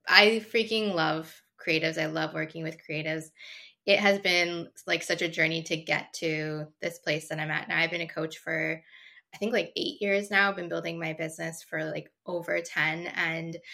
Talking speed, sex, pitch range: 200 wpm, female, 165-200 Hz